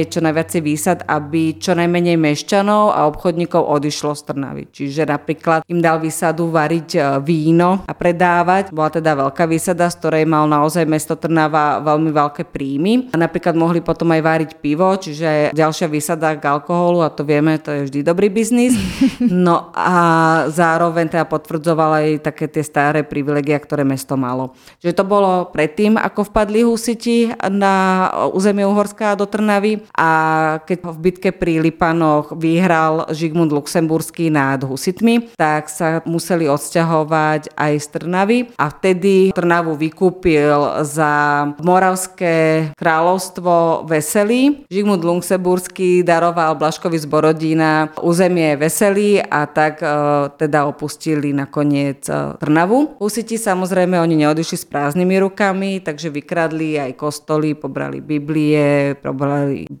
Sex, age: female, 30-49